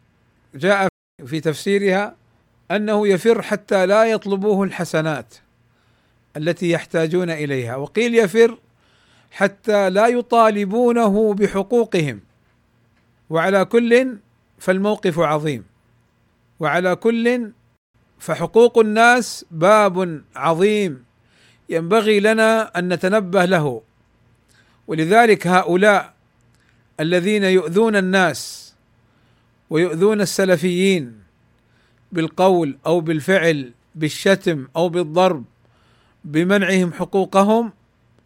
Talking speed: 75 wpm